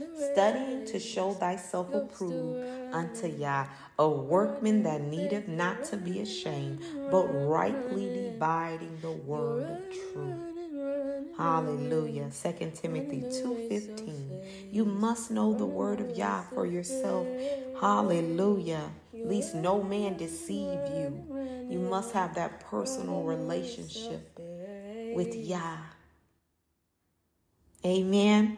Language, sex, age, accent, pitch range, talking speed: English, female, 40-59, American, 145-210 Hz, 105 wpm